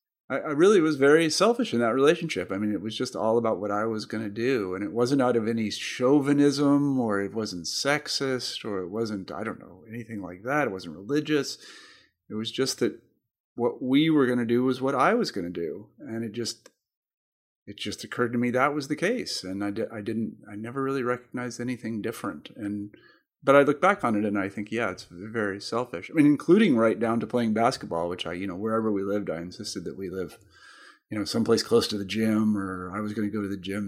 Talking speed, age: 240 wpm, 40-59